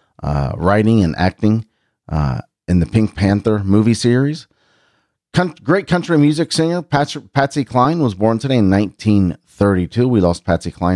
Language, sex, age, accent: English, male, 40-59, American